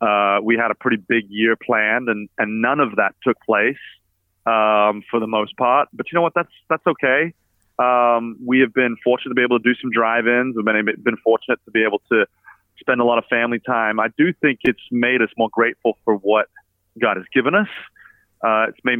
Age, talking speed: 30-49, 220 wpm